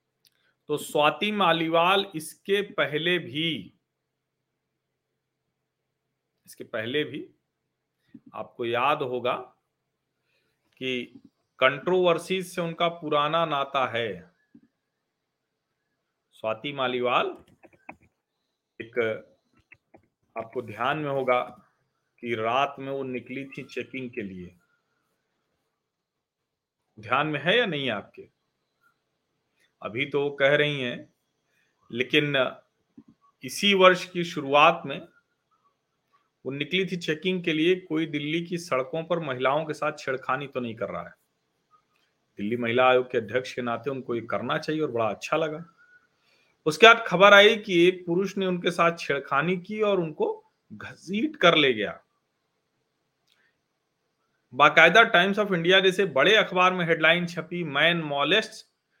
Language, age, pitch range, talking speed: Hindi, 40-59, 130-180 Hz, 120 wpm